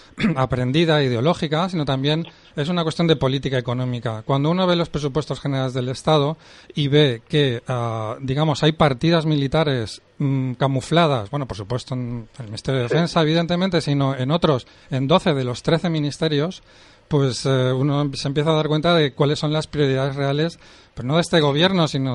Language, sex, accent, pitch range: Spanish, male, Spanish, 130-160 Hz